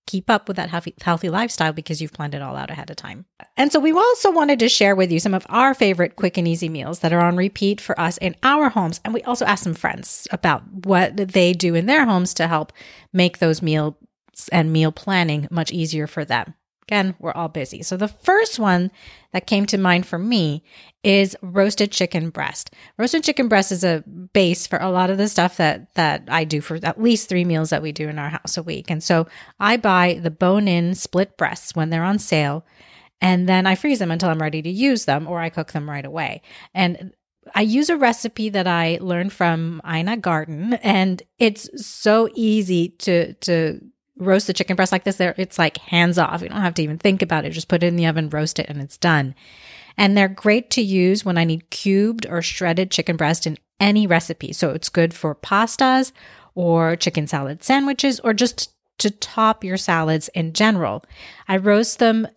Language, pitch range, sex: English, 165-205 Hz, female